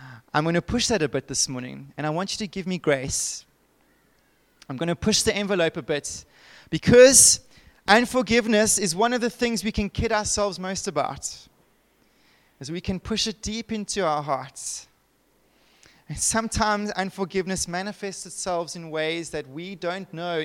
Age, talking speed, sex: 20-39, 170 wpm, male